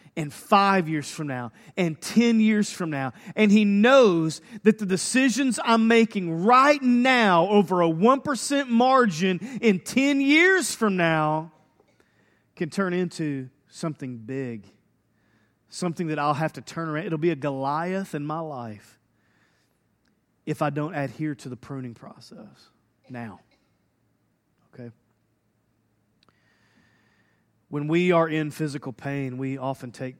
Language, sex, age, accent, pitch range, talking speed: English, male, 40-59, American, 135-195 Hz, 135 wpm